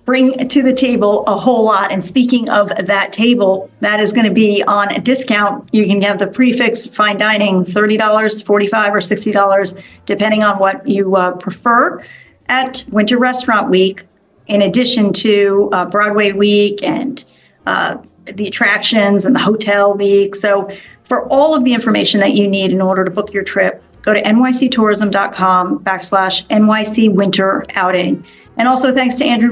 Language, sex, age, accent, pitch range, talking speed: English, female, 40-59, American, 200-240 Hz, 165 wpm